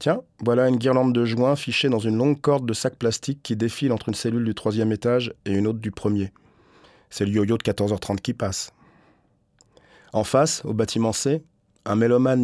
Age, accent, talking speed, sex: 30-49, French, 200 wpm, male